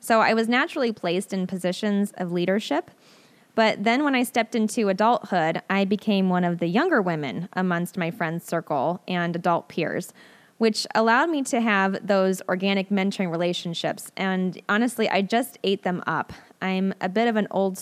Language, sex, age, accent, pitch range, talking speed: English, female, 20-39, American, 185-225 Hz, 175 wpm